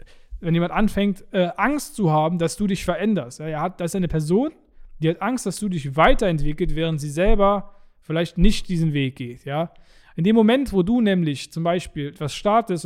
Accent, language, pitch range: German, German, 155-185 Hz